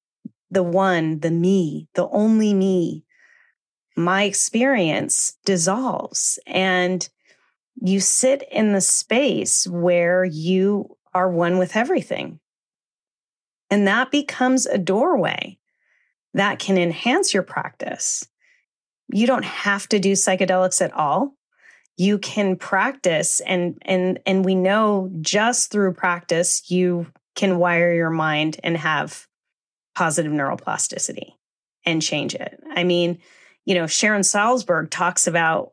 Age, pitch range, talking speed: 30-49, 180-235 Hz, 120 wpm